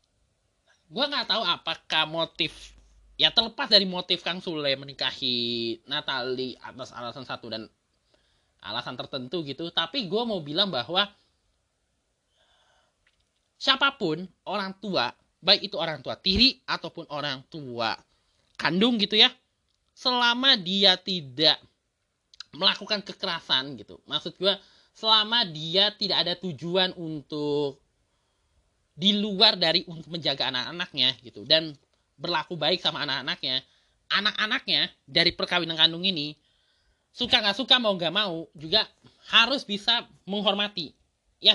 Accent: native